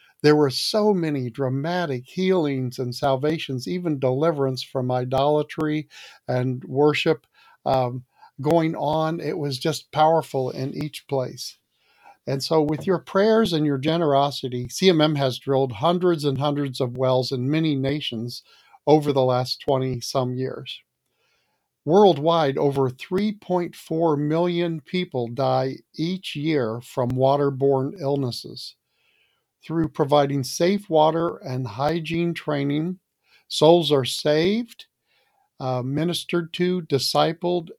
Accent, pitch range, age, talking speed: American, 135-165 Hz, 50-69, 115 wpm